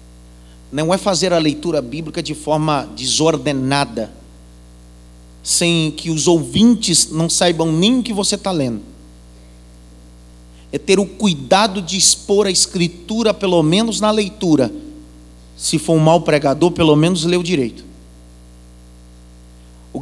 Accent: Brazilian